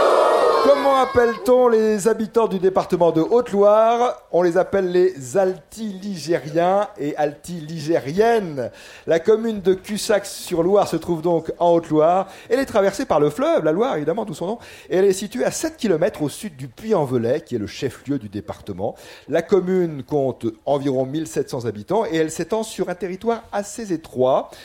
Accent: French